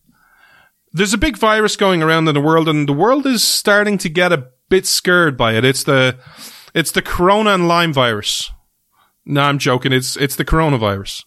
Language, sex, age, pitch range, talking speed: English, male, 30-49, 140-195 Hz, 190 wpm